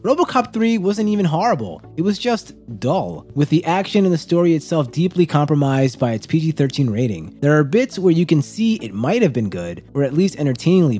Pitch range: 125-160 Hz